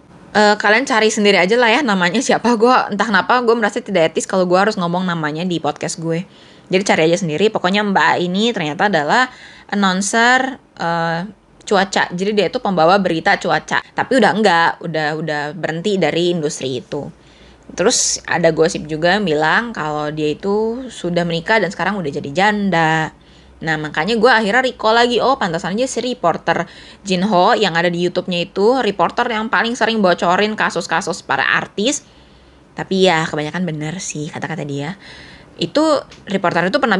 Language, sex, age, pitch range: Indonesian, female, 20-39, 165-215 Hz